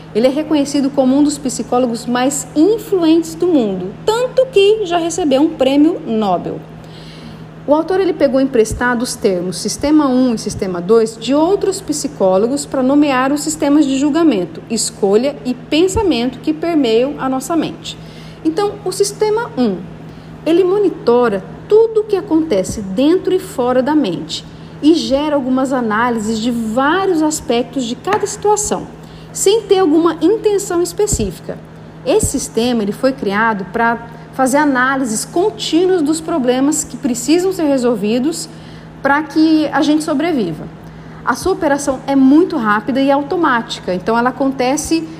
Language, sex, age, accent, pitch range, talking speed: Portuguese, female, 40-59, Brazilian, 245-335 Hz, 140 wpm